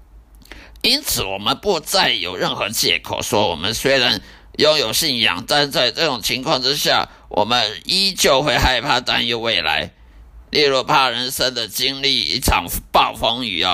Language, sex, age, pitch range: Chinese, male, 50-69, 100-150 Hz